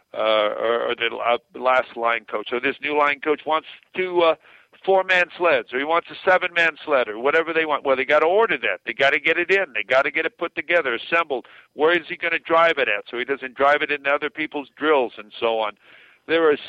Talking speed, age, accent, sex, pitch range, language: 255 wpm, 60-79, American, male, 140-170 Hz, English